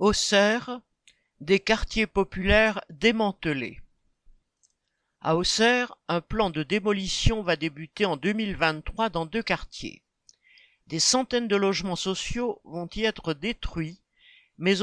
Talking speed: 115 wpm